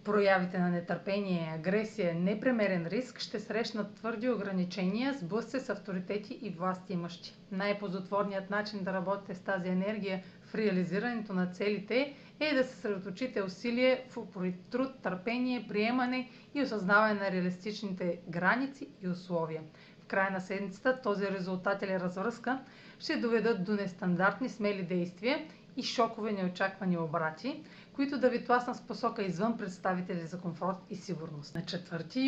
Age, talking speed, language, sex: 40-59, 140 wpm, Bulgarian, female